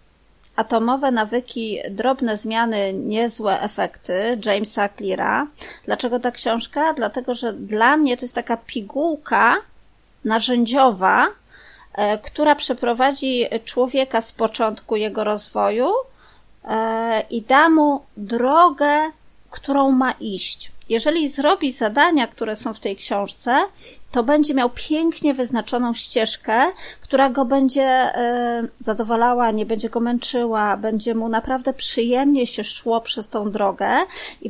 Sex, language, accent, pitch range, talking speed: female, Polish, native, 220-270 Hz, 115 wpm